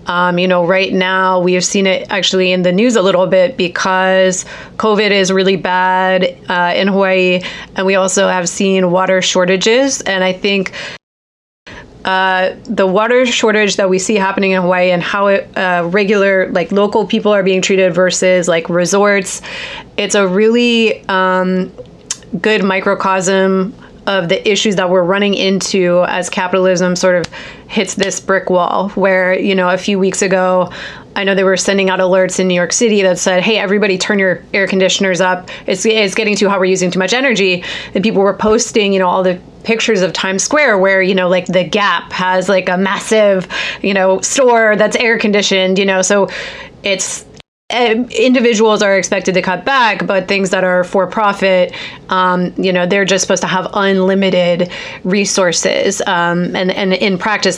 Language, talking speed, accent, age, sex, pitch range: English, 180 wpm, American, 30-49, female, 185-205 Hz